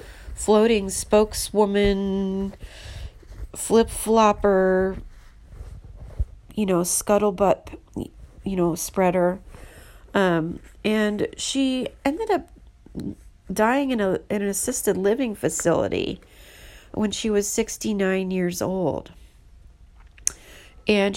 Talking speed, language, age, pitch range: 85 wpm, English, 40-59, 155-240 Hz